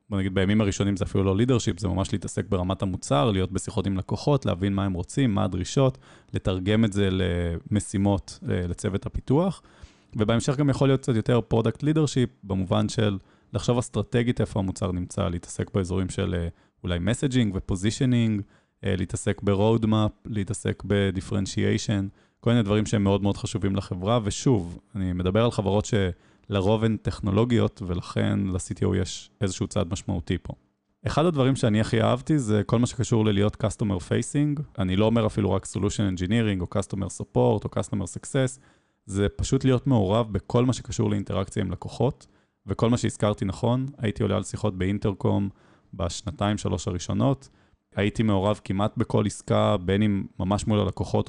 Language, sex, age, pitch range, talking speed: Hebrew, male, 20-39, 95-115 Hz, 160 wpm